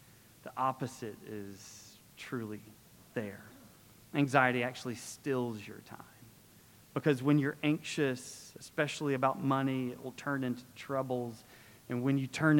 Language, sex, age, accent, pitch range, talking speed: English, male, 30-49, American, 130-180 Hz, 125 wpm